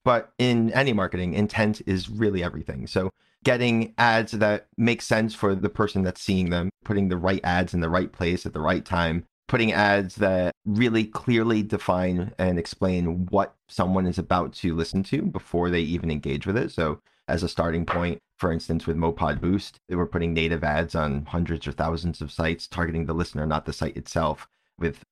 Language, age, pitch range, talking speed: English, 30-49, 85-100 Hz, 195 wpm